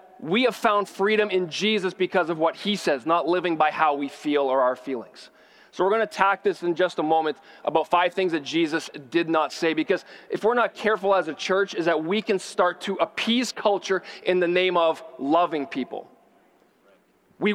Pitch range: 175-215 Hz